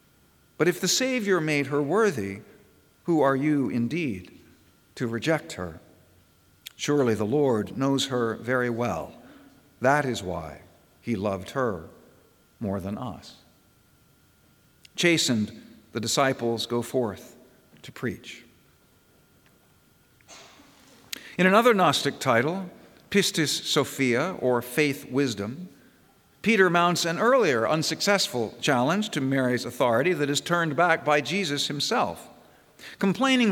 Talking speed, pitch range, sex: 115 wpm, 120-170 Hz, male